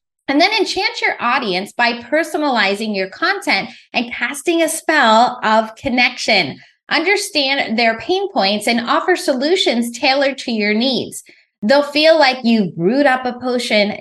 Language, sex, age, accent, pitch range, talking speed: English, female, 20-39, American, 210-285 Hz, 145 wpm